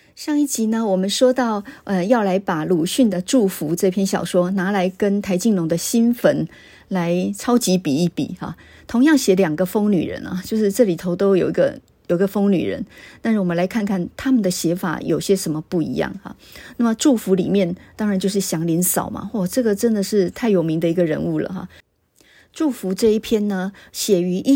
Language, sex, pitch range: Chinese, female, 180-220 Hz